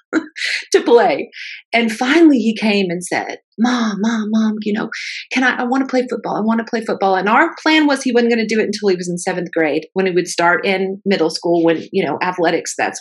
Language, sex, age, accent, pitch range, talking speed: English, female, 40-59, American, 195-245 Hz, 230 wpm